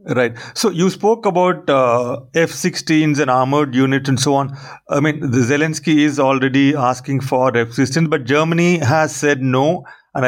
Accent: Indian